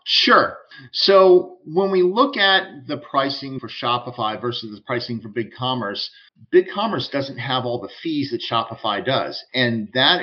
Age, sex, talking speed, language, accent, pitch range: 50-69, male, 165 wpm, English, American, 120-145 Hz